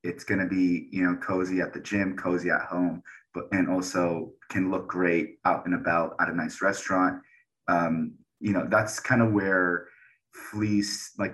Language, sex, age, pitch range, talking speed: English, male, 30-49, 90-100 Hz, 180 wpm